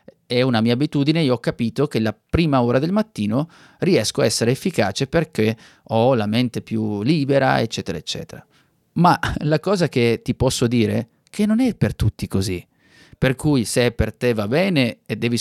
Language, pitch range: Italian, 110-135 Hz